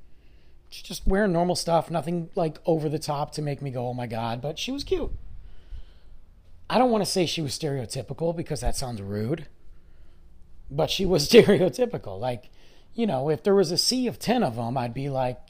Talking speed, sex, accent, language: 200 wpm, male, American, English